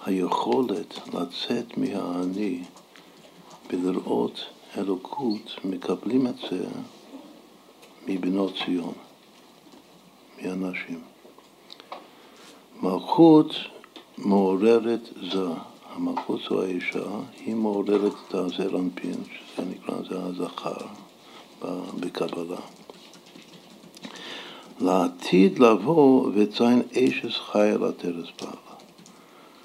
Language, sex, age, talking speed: Hebrew, male, 60-79, 70 wpm